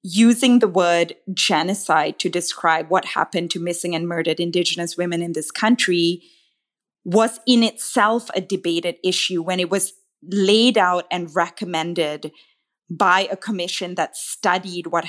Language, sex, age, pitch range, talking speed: English, female, 20-39, 170-205 Hz, 145 wpm